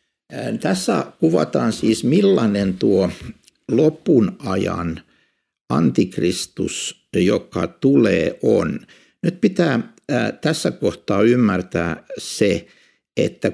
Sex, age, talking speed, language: male, 60-79, 80 wpm, Finnish